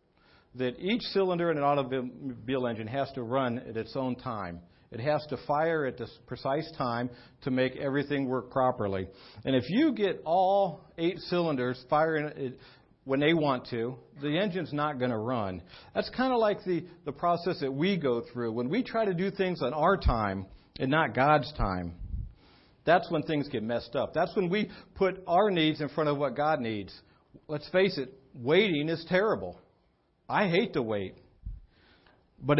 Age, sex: 50-69, male